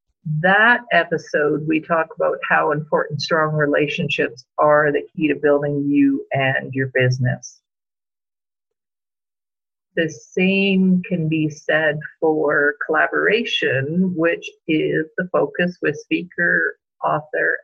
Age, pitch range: 50-69, 150-205 Hz